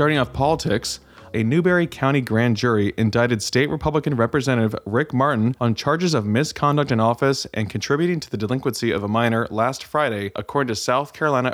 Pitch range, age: 110-130 Hz, 20-39